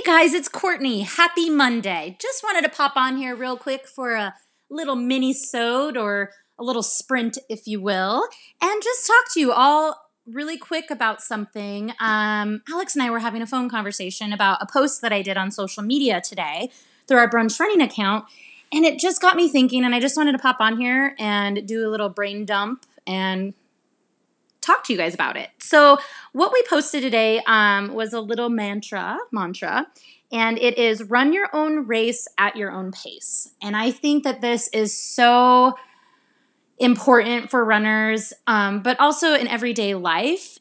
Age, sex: 20-39, female